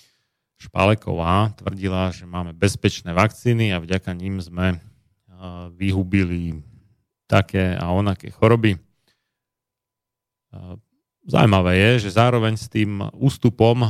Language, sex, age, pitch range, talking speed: Slovak, male, 30-49, 95-110 Hz, 95 wpm